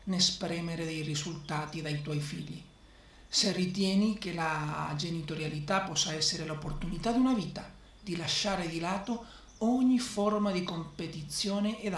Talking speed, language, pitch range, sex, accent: 130 wpm, Italian, 165-215 Hz, male, native